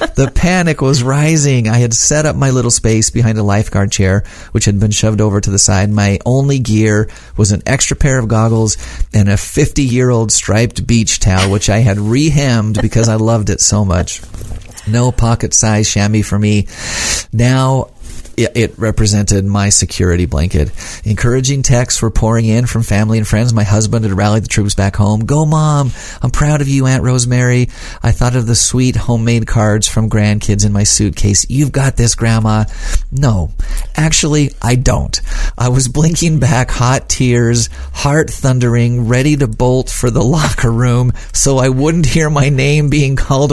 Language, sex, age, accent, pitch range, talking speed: English, male, 40-59, American, 105-125 Hz, 175 wpm